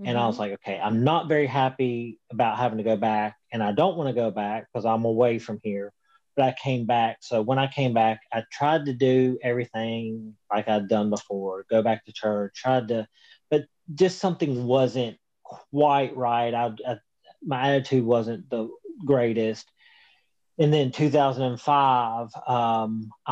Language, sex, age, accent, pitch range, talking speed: English, male, 30-49, American, 110-130 Hz, 165 wpm